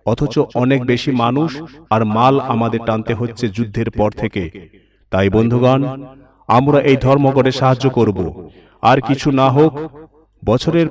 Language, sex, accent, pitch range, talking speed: Bengali, male, native, 115-155 Hz, 125 wpm